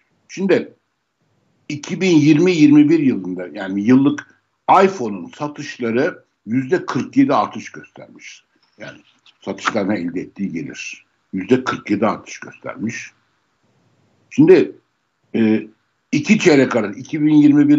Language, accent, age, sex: Turkish, native, 60-79, male